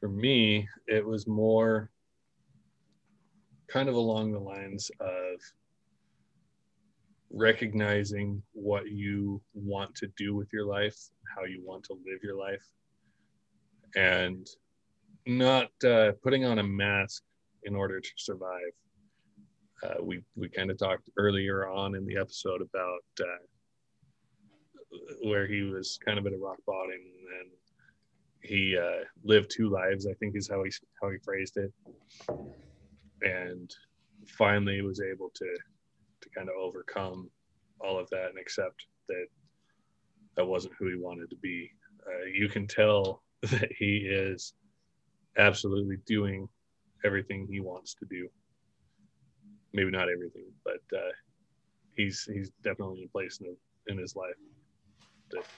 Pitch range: 95-110 Hz